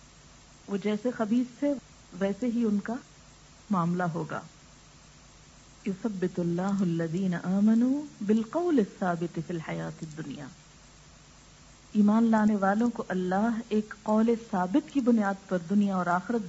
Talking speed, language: 115 wpm, Urdu